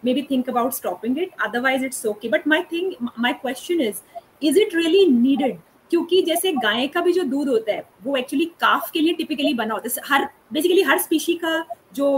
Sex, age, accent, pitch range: female, 20-39, native, 265-360 Hz